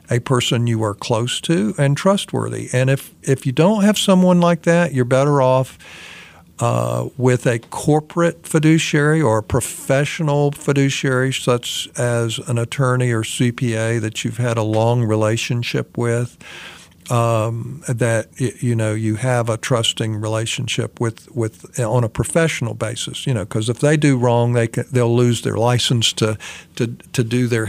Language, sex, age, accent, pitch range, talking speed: English, male, 50-69, American, 115-140 Hz, 165 wpm